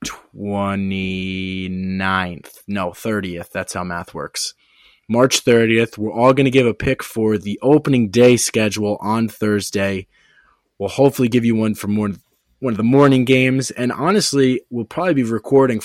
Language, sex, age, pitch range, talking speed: English, male, 20-39, 95-125 Hz, 155 wpm